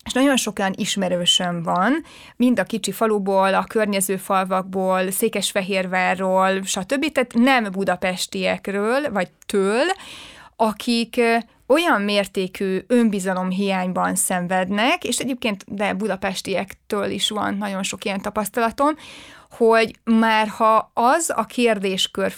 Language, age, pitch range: Hungarian, 30-49, 190-225 Hz